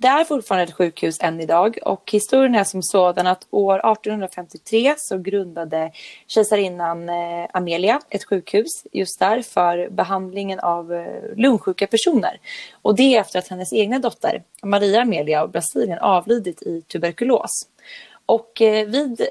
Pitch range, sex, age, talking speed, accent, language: 180-225 Hz, female, 20-39, 145 wpm, native, Swedish